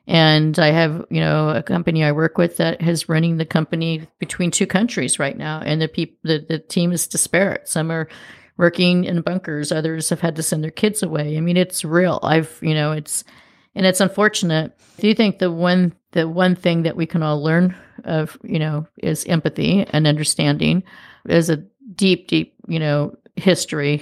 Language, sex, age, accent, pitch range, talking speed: English, female, 40-59, American, 155-180 Hz, 195 wpm